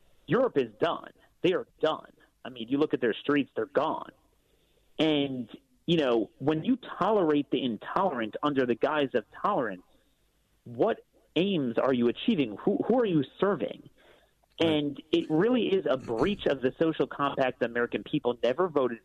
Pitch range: 130-170 Hz